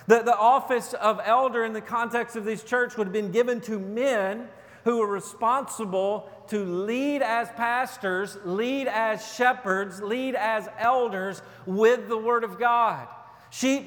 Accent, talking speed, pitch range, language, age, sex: American, 155 wpm, 185-230 Hz, English, 40-59, male